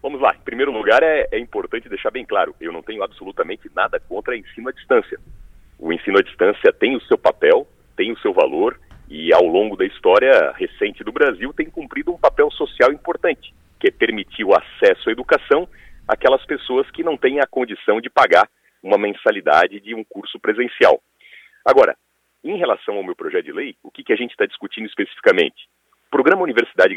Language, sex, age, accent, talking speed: Portuguese, male, 40-59, Brazilian, 195 wpm